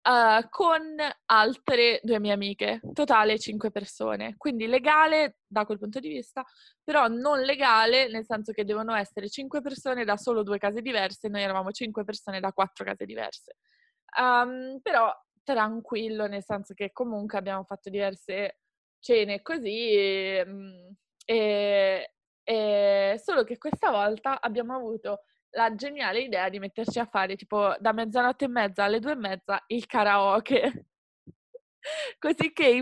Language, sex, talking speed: Italian, female, 150 wpm